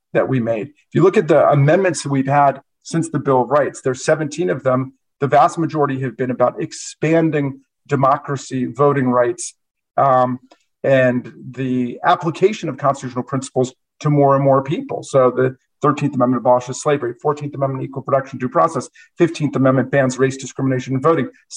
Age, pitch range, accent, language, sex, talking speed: 40-59, 130-155 Hz, American, English, male, 175 wpm